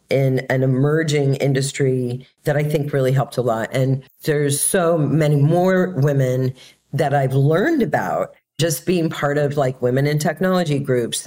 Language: English